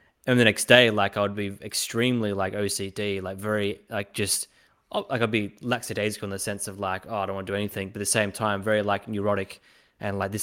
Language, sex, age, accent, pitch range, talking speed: English, male, 20-39, Australian, 100-115 Hz, 240 wpm